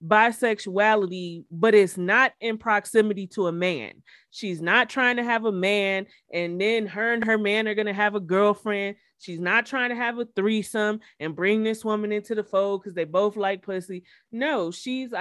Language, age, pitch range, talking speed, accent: English, 30-49, 185-225 Hz, 195 wpm, American